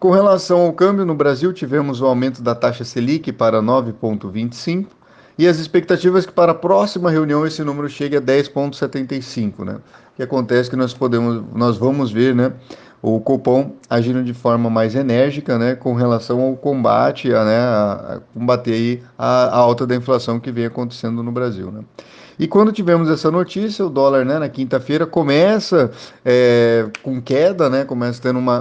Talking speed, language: 180 wpm, Portuguese